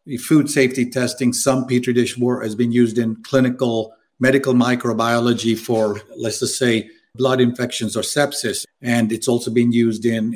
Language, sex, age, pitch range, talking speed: English, male, 50-69, 115-130 Hz, 155 wpm